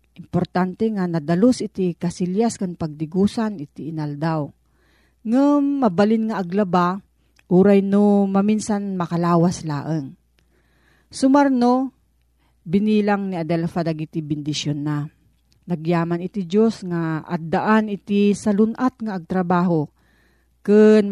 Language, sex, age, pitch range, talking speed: Filipino, female, 40-59, 165-215 Hz, 100 wpm